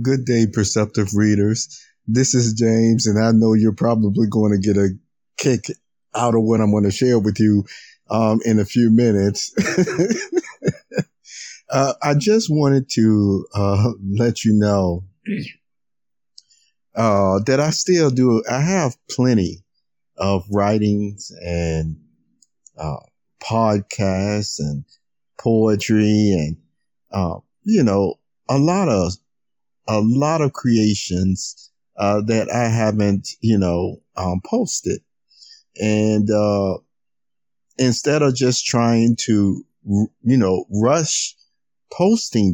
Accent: American